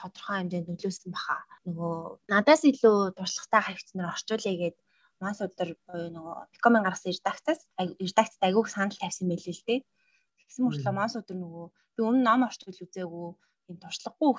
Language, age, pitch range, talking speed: English, 20-39, 180-235 Hz, 100 wpm